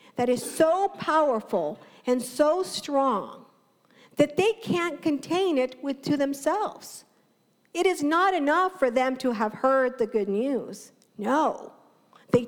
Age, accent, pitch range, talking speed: 50-69, American, 215-290 Hz, 140 wpm